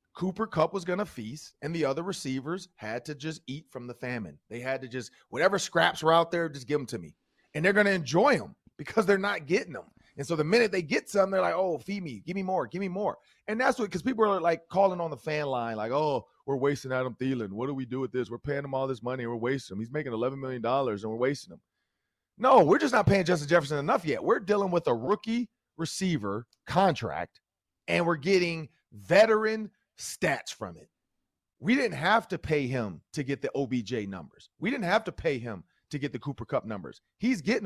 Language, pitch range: English, 130-195 Hz